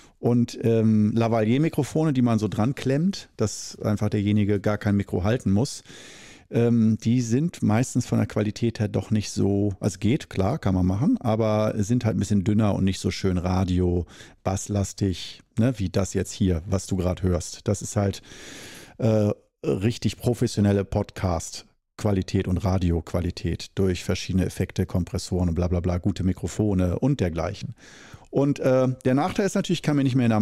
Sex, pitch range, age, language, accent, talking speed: male, 100-130 Hz, 40-59, German, German, 175 wpm